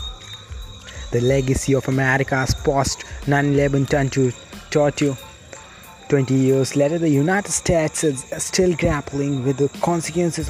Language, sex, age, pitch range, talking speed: English, male, 20-39, 135-160 Hz, 115 wpm